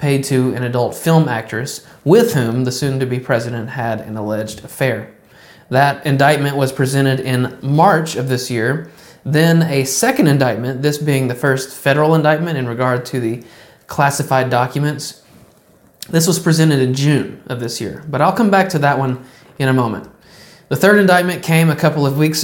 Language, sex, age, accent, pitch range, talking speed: English, male, 20-39, American, 125-155 Hz, 175 wpm